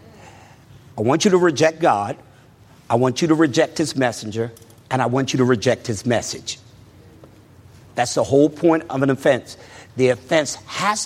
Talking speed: 170 wpm